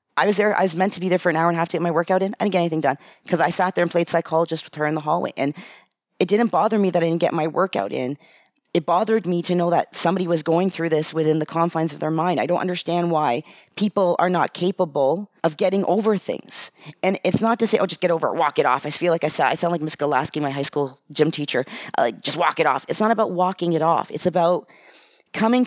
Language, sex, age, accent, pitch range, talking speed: English, female, 30-49, American, 165-200 Hz, 275 wpm